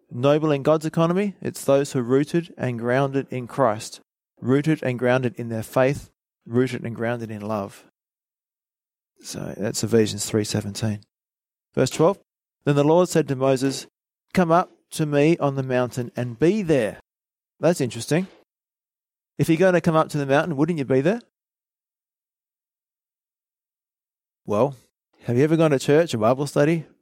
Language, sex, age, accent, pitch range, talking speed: English, male, 30-49, Australian, 120-150 Hz, 160 wpm